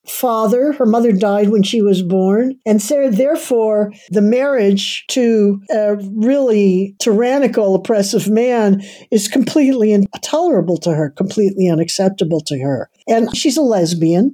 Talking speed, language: 130 wpm, English